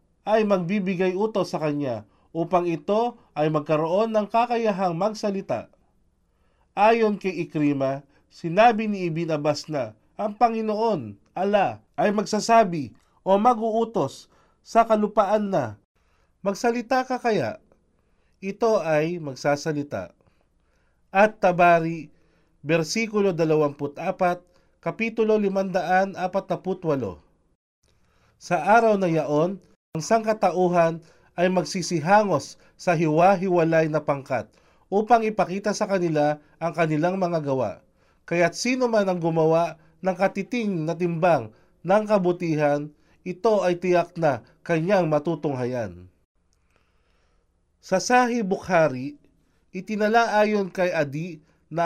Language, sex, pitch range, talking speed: Filipino, male, 155-205 Hz, 100 wpm